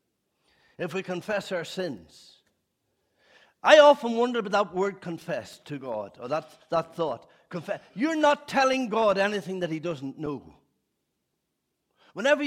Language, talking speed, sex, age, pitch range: English, 140 wpm, male, 60-79, 195-255 Hz